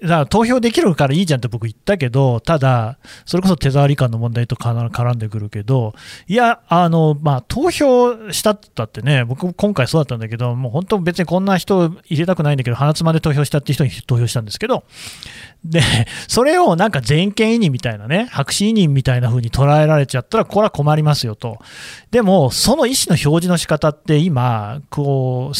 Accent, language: native, Japanese